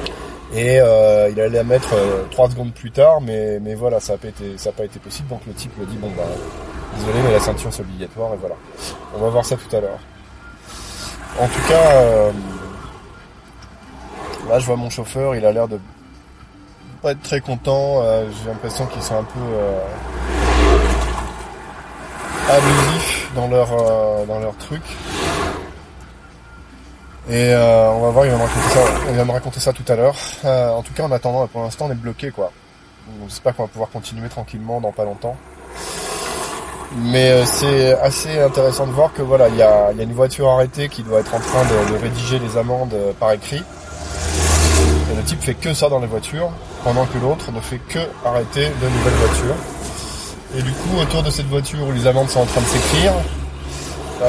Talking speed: 195 wpm